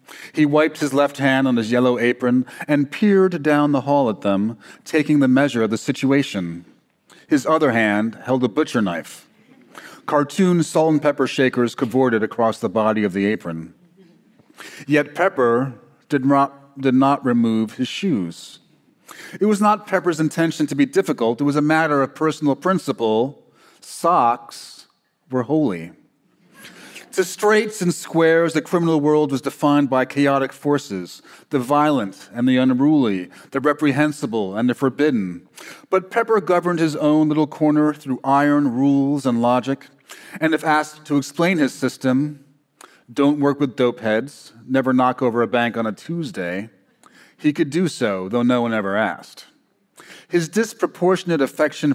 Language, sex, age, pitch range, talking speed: English, male, 40-59, 125-155 Hz, 155 wpm